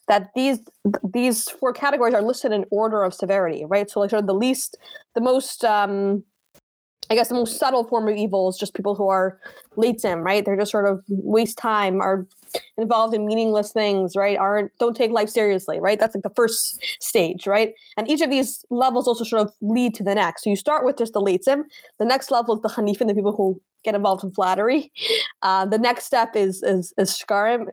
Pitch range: 195-235 Hz